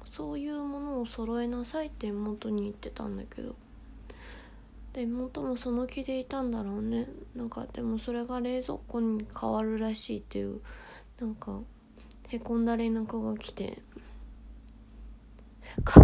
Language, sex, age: Japanese, female, 20-39